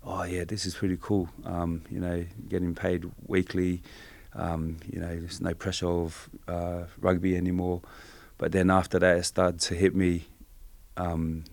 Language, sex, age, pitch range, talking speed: English, male, 20-39, 85-95 Hz, 165 wpm